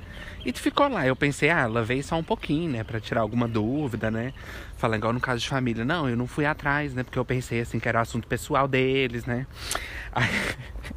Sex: male